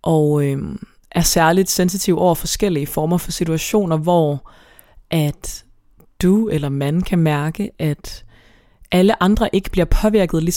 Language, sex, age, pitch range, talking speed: Danish, female, 20-39, 150-185 Hz, 135 wpm